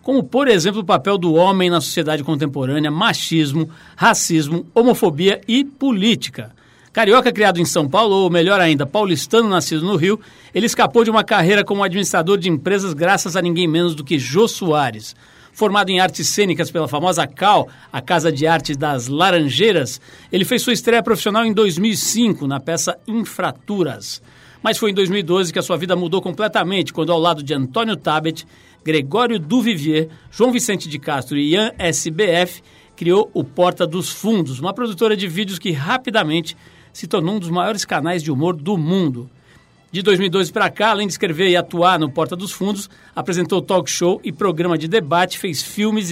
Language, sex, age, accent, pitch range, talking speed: Portuguese, male, 60-79, Brazilian, 160-215 Hz, 175 wpm